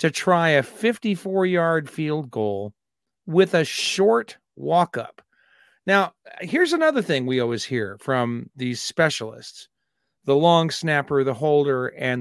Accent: American